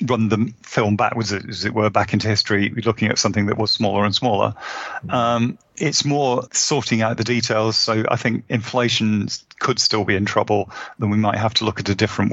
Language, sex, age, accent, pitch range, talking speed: English, male, 40-59, British, 100-115 Hz, 210 wpm